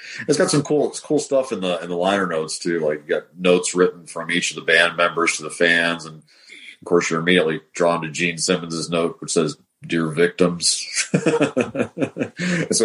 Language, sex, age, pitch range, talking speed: English, male, 40-59, 80-105 Hz, 200 wpm